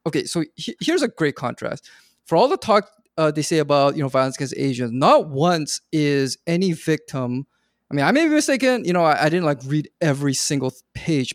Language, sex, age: English, male, 20-39